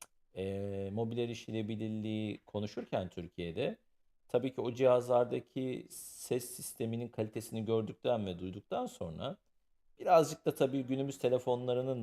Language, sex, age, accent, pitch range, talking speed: Turkish, male, 50-69, native, 95-125 Hz, 105 wpm